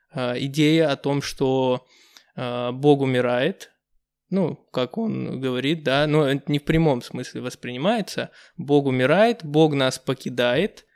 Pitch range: 135-160 Hz